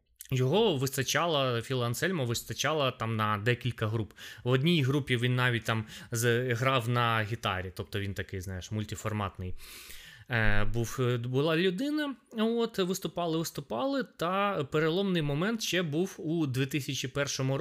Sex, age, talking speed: male, 20-39, 125 wpm